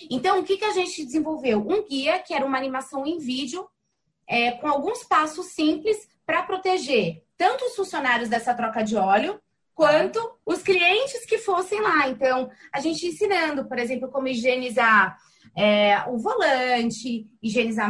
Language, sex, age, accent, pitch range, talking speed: Portuguese, female, 20-39, Brazilian, 235-345 Hz, 160 wpm